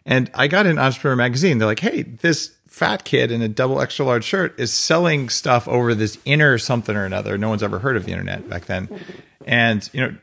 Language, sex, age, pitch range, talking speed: English, male, 40-59, 100-145 Hz, 230 wpm